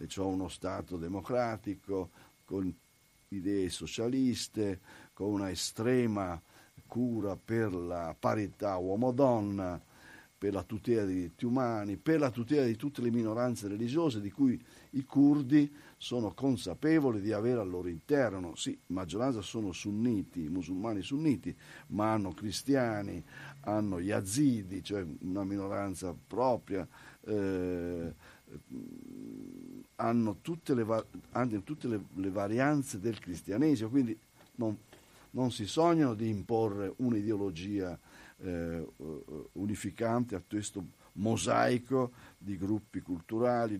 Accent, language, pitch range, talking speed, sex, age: native, Italian, 95-125 Hz, 110 wpm, male, 50-69